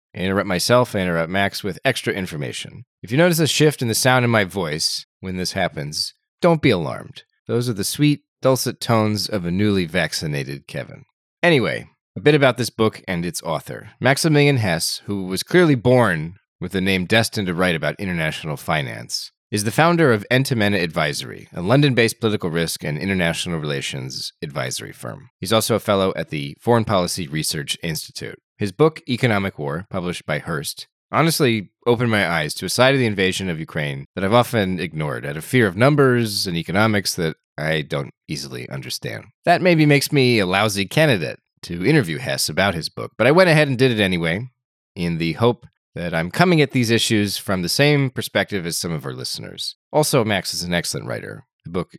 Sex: male